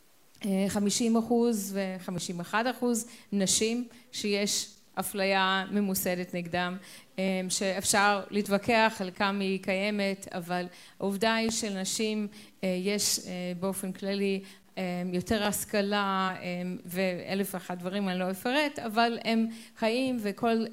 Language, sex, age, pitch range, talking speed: Hebrew, female, 30-49, 185-210 Hz, 100 wpm